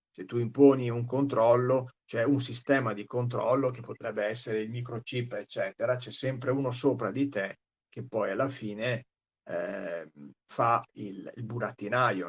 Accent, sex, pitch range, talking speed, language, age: native, male, 115-145 Hz, 150 wpm, Italian, 50-69